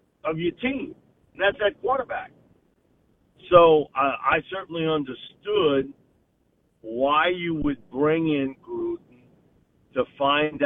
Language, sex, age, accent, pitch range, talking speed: English, male, 50-69, American, 130-160 Hz, 115 wpm